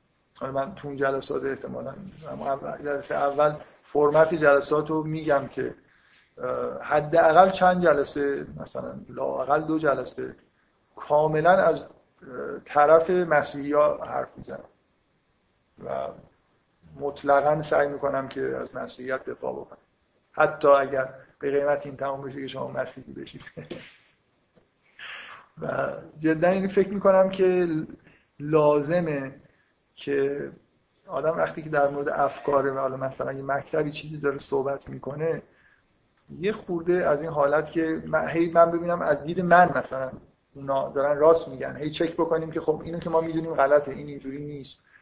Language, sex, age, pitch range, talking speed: Persian, male, 50-69, 140-165 Hz, 130 wpm